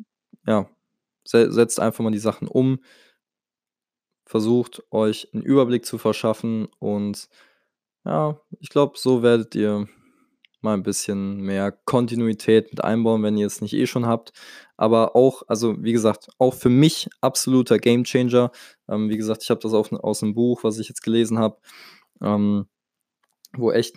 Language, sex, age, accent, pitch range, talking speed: German, male, 20-39, German, 105-120 Hz, 150 wpm